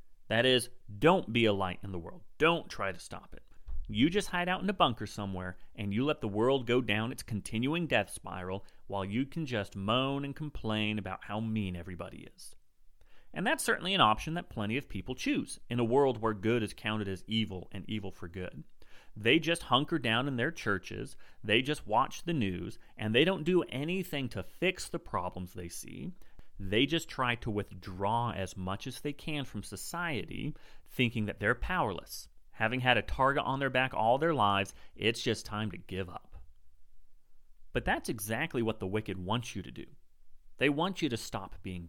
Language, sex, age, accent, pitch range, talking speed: English, male, 30-49, American, 95-130 Hz, 200 wpm